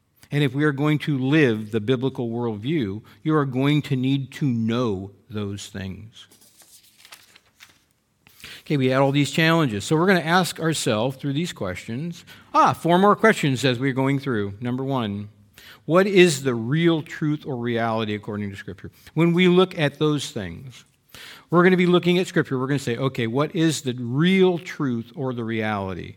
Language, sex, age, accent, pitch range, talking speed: English, male, 50-69, American, 115-165 Hz, 185 wpm